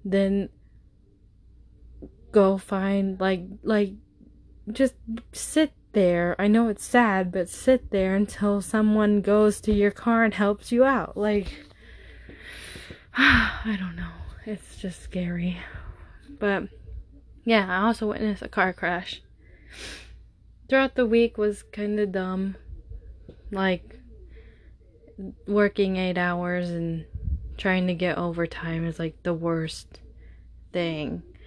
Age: 20-39